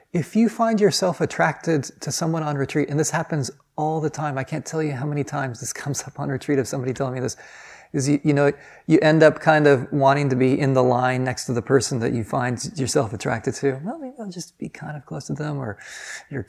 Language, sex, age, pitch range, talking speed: English, male, 30-49, 135-165 Hz, 250 wpm